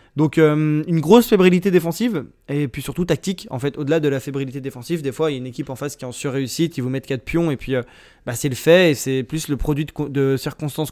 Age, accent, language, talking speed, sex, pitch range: 20-39, French, French, 265 wpm, male, 130-155 Hz